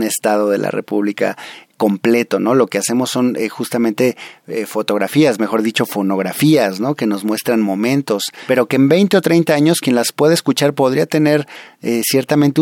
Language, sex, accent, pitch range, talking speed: Spanish, male, Mexican, 100-120 Hz, 175 wpm